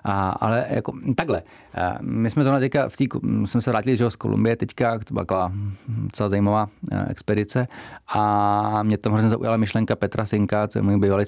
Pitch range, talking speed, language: 100-115 Hz, 175 wpm, Czech